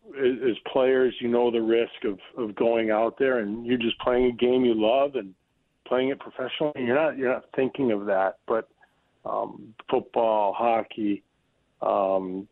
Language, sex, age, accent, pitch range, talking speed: English, male, 40-59, American, 105-130 Hz, 175 wpm